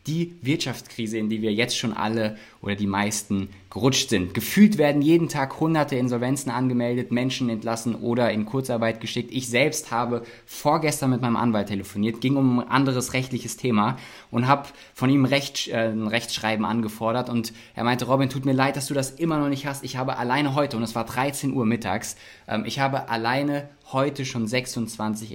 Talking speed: 185 wpm